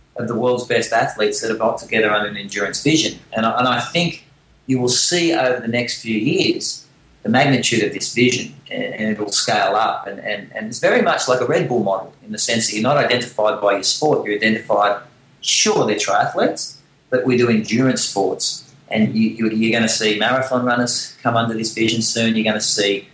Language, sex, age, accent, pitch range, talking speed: English, male, 40-59, Australian, 110-130 Hz, 220 wpm